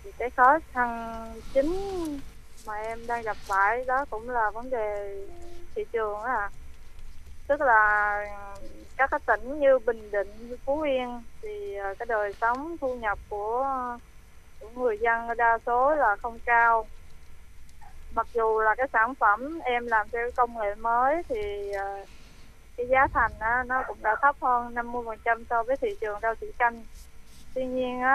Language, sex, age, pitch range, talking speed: Vietnamese, female, 20-39, 210-270 Hz, 160 wpm